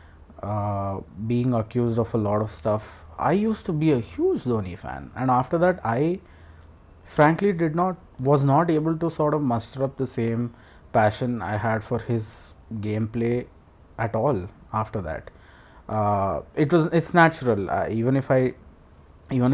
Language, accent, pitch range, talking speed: English, Indian, 100-130 Hz, 165 wpm